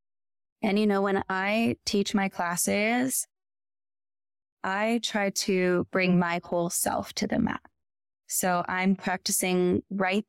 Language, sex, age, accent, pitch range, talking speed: English, female, 20-39, American, 175-210 Hz, 130 wpm